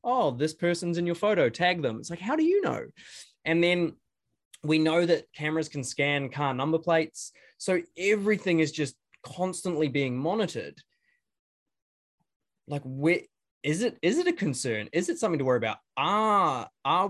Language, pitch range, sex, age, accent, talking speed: English, 135-170 Hz, male, 20-39, Australian, 170 wpm